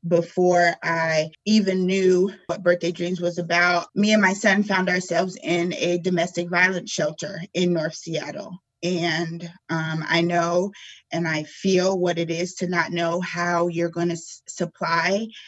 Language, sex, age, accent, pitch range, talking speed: English, female, 20-39, American, 165-185 Hz, 160 wpm